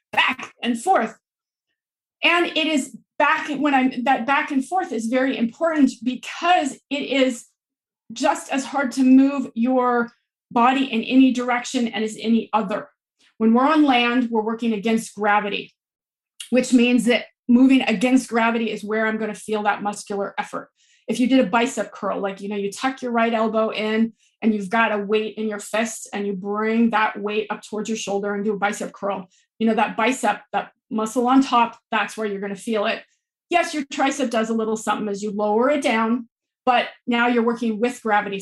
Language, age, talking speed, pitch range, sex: English, 30-49, 195 wpm, 215-265 Hz, female